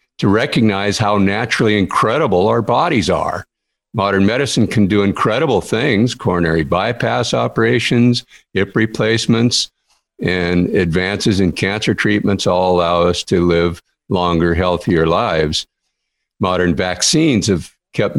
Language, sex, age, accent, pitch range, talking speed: English, male, 50-69, American, 90-120 Hz, 120 wpm